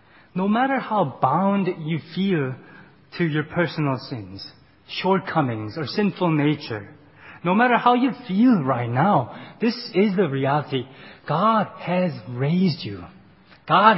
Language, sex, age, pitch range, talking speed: English, male, 20-39, 135-205 Hz, 130 wpm